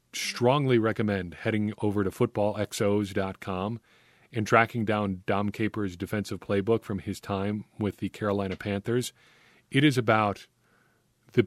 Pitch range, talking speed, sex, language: 100-115 Hz, 125 wpm, male, English